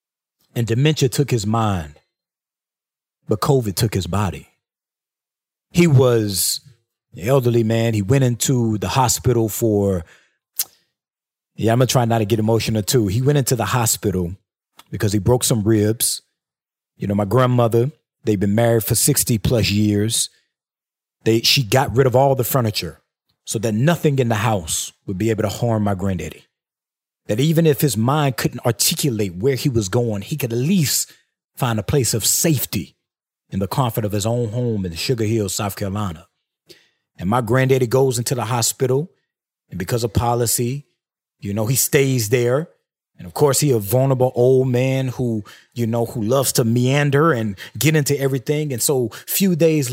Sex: male